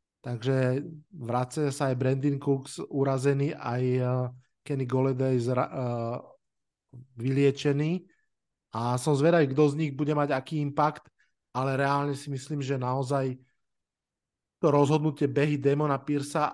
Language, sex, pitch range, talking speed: Slovak, male, 135-155 Hz, 125 wpm